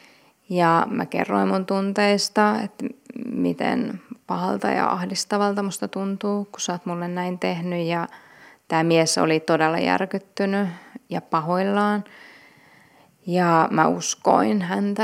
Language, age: Finnish, 20-39